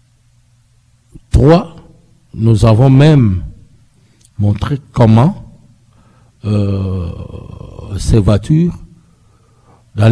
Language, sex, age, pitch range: French, male, 60-79, 110-135 Hz